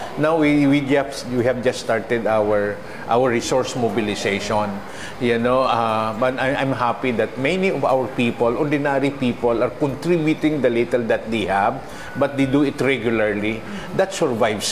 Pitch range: 115-140 Hz